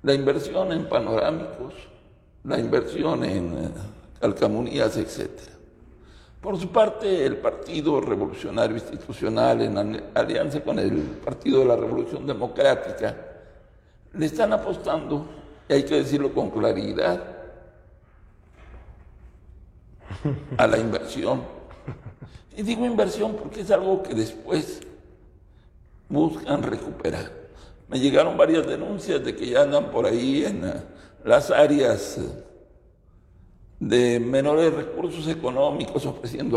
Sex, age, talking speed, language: male, 60-79, 105 wpm, Spanish